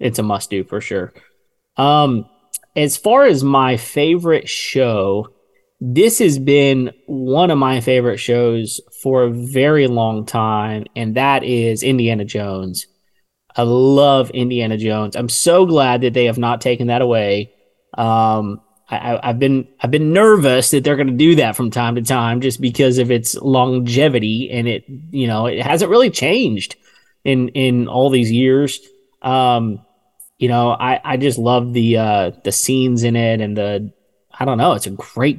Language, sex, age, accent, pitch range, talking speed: English, male, 20-39, American, 120-145 Hz, 175 wpm